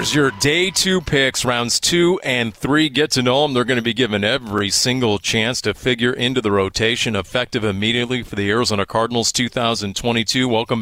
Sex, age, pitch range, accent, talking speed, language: male, 40-59, 110-140 Hz, American, 185 wpm, English